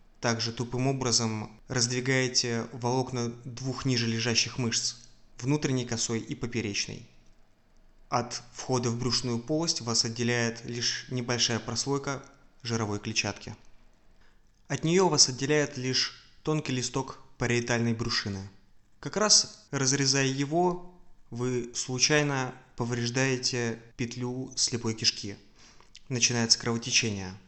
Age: 20-39